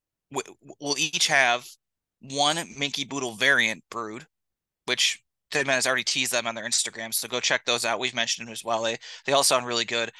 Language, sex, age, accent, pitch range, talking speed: English, male, 20-39, American, 115-145 Hz, 195 wpm